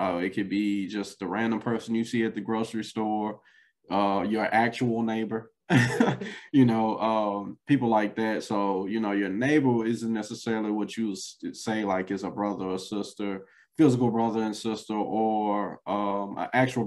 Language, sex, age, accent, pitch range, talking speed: English, male, 20-39, American, 105-125 Hz, 170 wpm